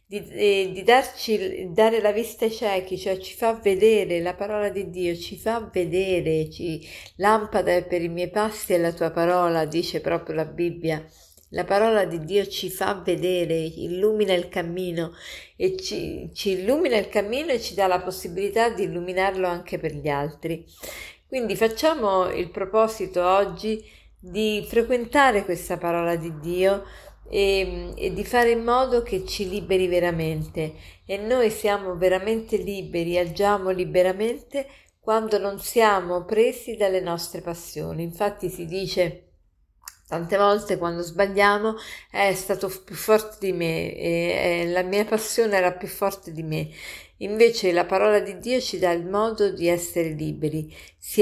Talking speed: 155 wpm